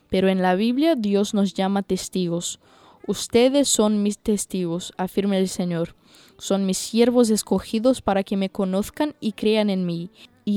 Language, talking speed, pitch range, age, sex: Spanish, 160 wpm, 195-230 Hz, 10-29, female